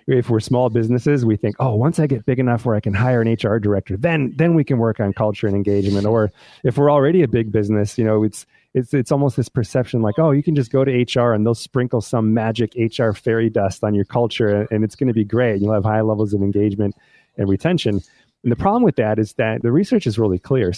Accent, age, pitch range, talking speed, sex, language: American, 30-49, 105-135 Hz, 255 wpm, male, English